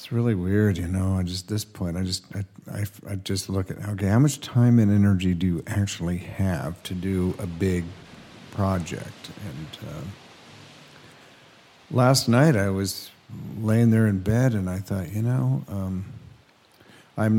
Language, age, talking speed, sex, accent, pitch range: English, 50-69, 155 wpm, male, American, 95-120 Hz